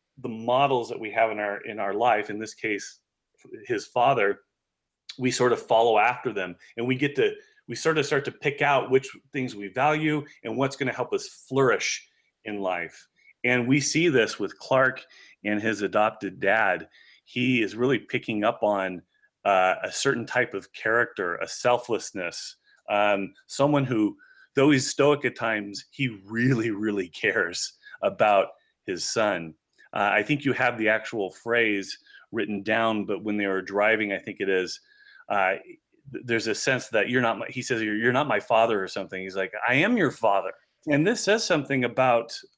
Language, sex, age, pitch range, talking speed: English, male, 30-49, 110-160 Hz, 185 wpm